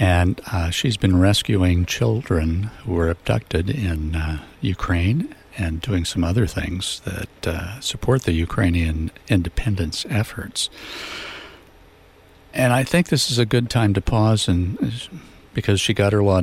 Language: English